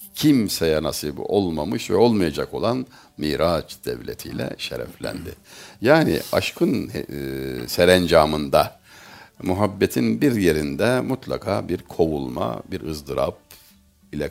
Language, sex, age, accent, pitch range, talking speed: Turkish, male, 60-79, native, 80-115 Hz, 90 wpm